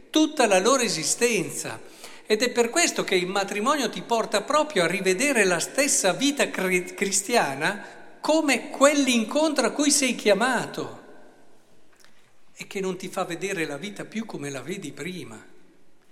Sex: male